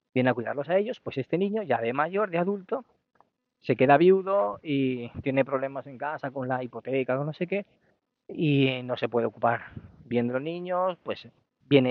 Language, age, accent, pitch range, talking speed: Spanish, 20-39, Spanish, 120-150 Hz, 190 wpm